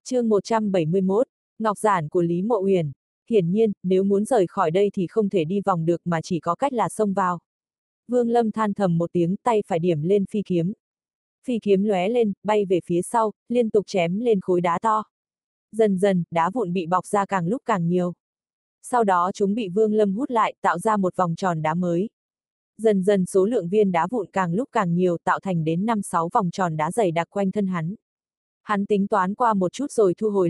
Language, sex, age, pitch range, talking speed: Vietnamese, female, 20-39, 175-215 Hz, 220 wpm